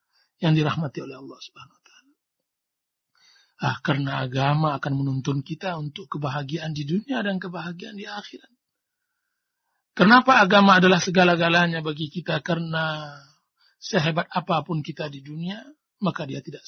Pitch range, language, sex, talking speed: 155-245 Hz, Indonesian, male, 125 wpm